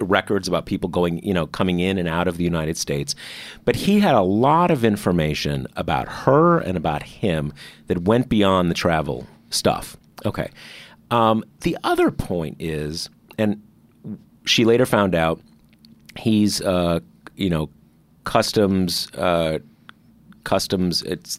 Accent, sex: American, male